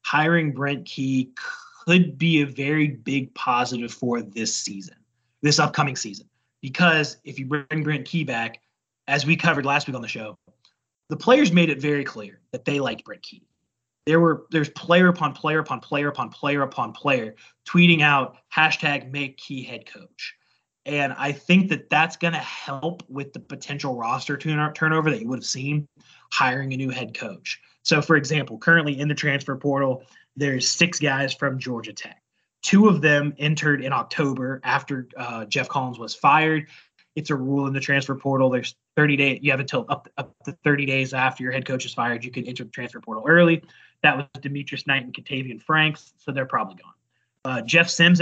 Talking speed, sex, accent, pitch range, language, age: 190 wpm, male, American, 130-155 Hz, English, 30-49